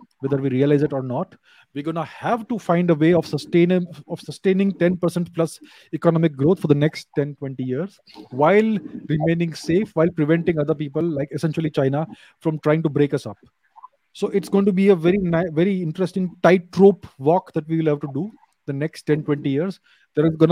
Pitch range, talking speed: 150-190 Hz, 195 wpm